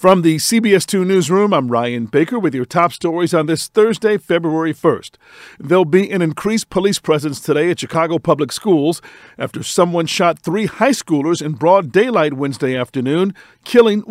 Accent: American